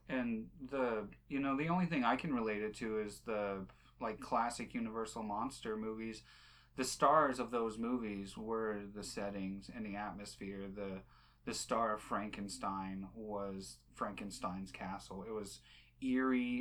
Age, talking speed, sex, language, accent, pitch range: 30-49, 150 wpm, male, English, American, 100-130 Hz